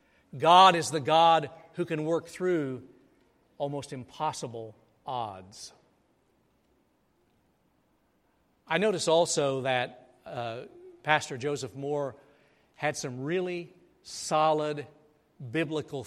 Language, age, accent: English, 50-69, American